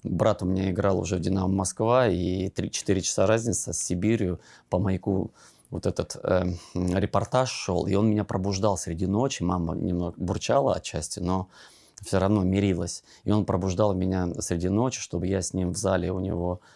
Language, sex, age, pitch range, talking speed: Russian, male, 20-39, 90-105 Hz, 175 wpm